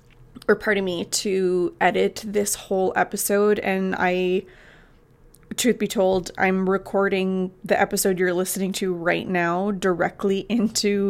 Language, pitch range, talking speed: English, 180-210 Hz, 130 wpm